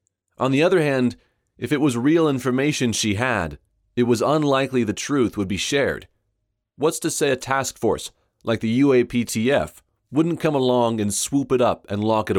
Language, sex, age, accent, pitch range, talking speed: English, male, 30-49, American, 105-130 Hz, 185 wpm